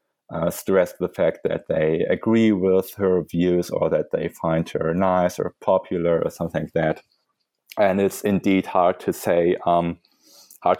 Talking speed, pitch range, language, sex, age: 165 wpm, 85-100 Hz, English, male, 20-39